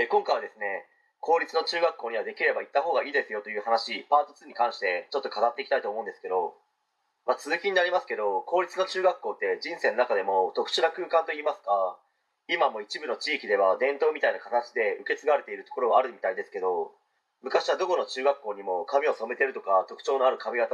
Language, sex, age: Japanese, male, 30-49